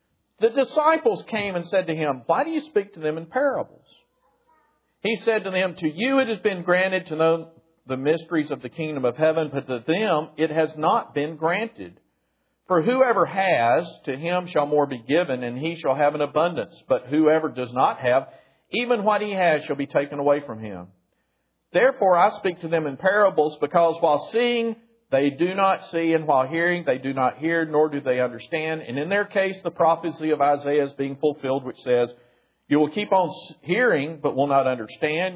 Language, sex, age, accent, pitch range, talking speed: English, male, 50-69, American, 135-180 Hz, 200 wpm